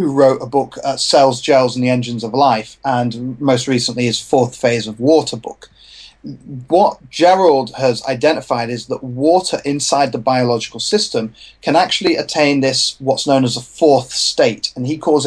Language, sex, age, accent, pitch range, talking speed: English, male, 30-49, British, 125-155 Hz, 175 wpm